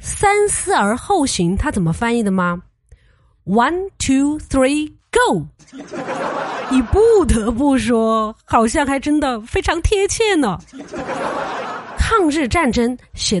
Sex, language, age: female, Chinese, 30-49